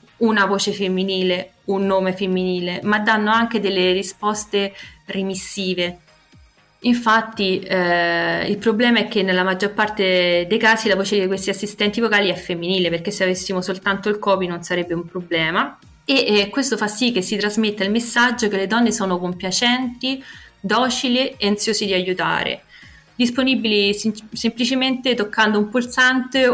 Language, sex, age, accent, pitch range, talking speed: Italian, female, 20-39, native, 185-220 Hz, 150 wpm